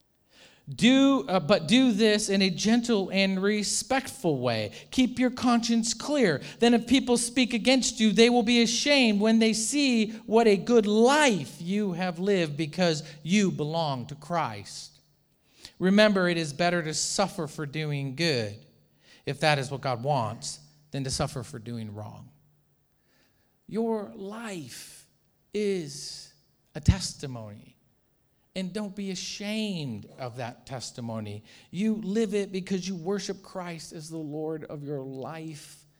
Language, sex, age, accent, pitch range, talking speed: English, male, 50-69, American, 135-200 Hz, 145 wpm